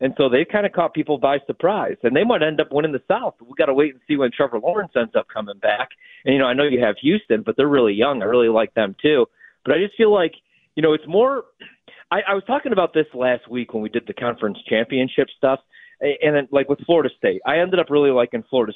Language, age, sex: English, 30-49, male